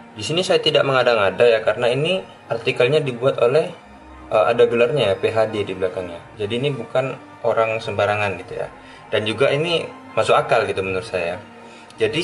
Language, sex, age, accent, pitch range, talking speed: Indonesian, male, 20-39, native, 110-135 Hz, 170 wpm